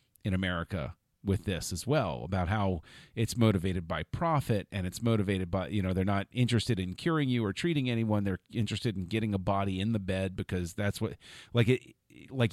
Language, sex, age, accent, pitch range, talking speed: English, male, 40-59, American, 95-125 Hz, 200 wpm